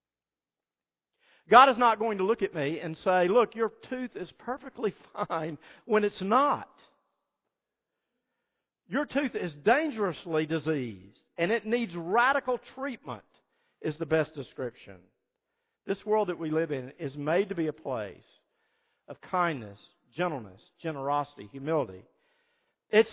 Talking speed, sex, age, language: 130 wpm, male, 50-69, English